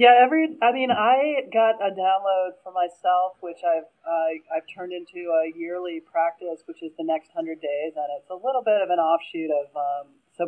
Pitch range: 150-190 Hz